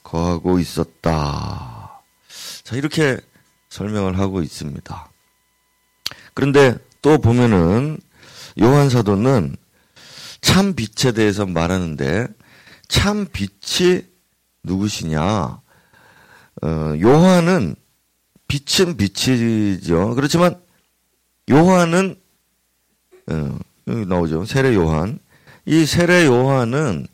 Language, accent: Korean, native